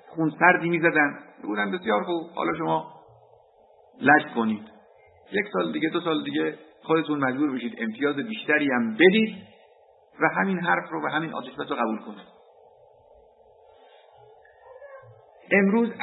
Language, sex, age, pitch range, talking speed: Persian, male, 50-69, 160-210 Hz, 130 wpm